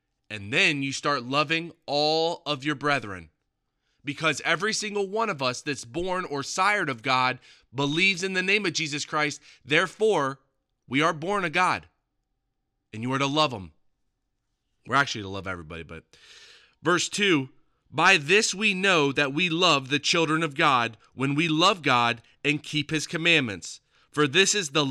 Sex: male